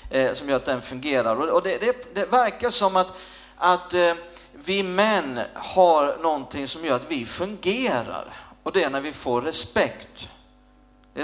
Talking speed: 160 wpm